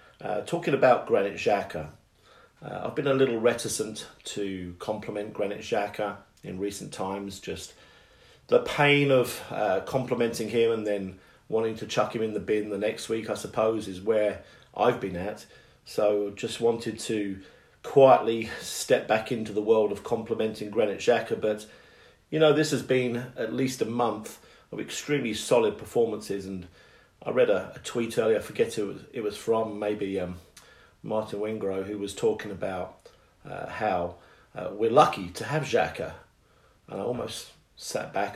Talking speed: 165 wpm